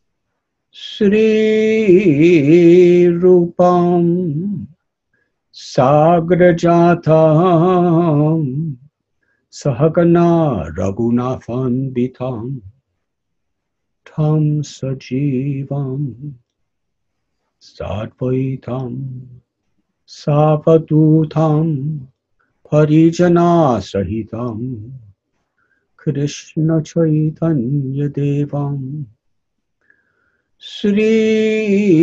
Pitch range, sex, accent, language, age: 130-170 Hz, male, Indian, English, 60-79